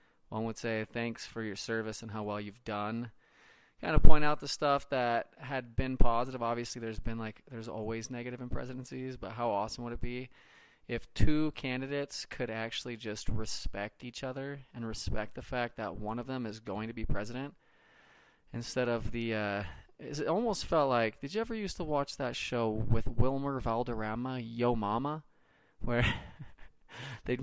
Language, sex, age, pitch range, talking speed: English, male, 20-39, 110-130 Hz, 180 wpm